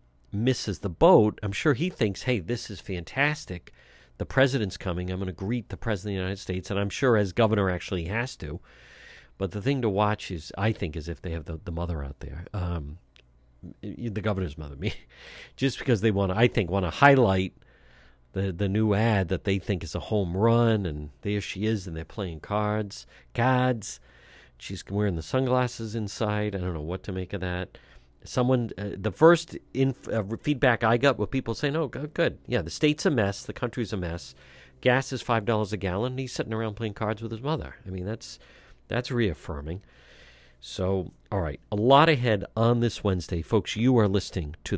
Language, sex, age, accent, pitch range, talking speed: English, male, 50-69, American, 85-115 Hz, 205 wpm